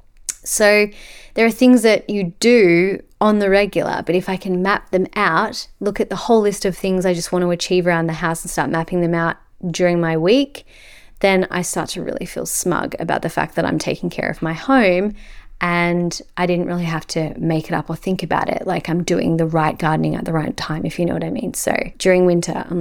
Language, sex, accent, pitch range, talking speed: English, female, Australian, 170-200 Hz, 235 wpm